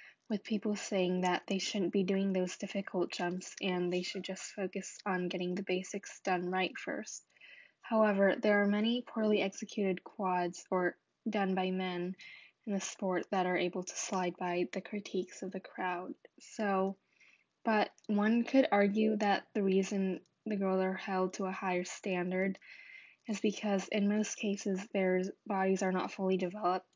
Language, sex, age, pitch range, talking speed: English, female, 10-29, 185-205 Hz, 165 wpm